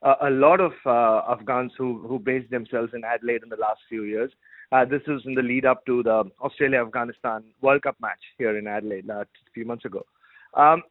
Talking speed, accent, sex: 205 wpm, Indian, male